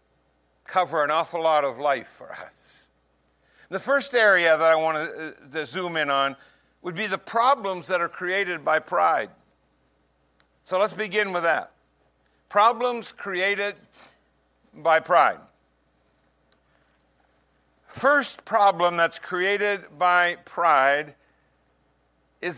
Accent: American